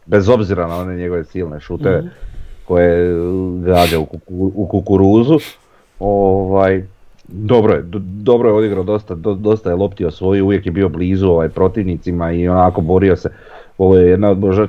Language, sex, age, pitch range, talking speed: Croatian, male, 40-59, 85-100 Hz, 165 wpm